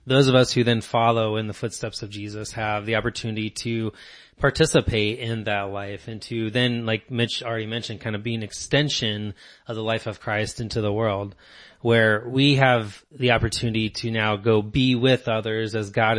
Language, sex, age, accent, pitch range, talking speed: English, male, 20-39, American, 105-125 Hz, 195 wpm